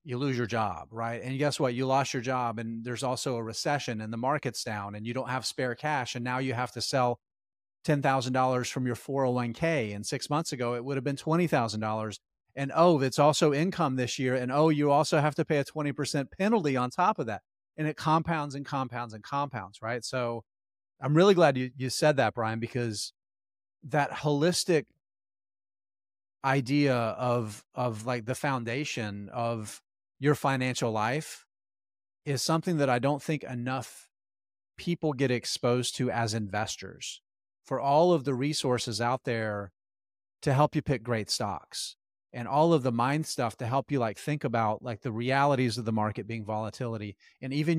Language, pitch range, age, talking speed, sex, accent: English, 115-145 Hz, 30-49, 190 wpm, male, American